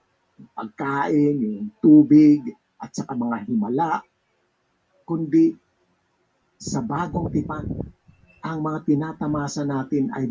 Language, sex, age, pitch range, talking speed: Filipino, male, 50-69, 135-215 Hz, 85 wpm